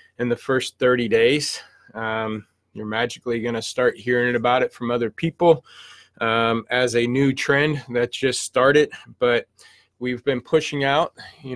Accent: American